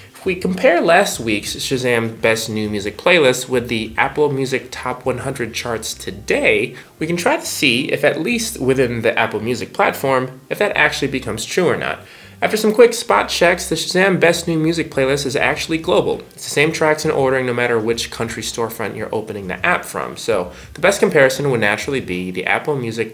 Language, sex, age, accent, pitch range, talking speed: English, male, 20-39, American, 115-155 Hz, 200 wpm